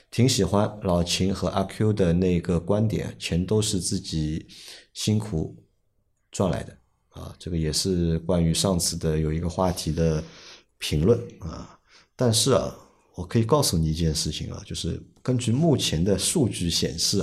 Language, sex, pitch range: Chinese, male, 85-110 Hz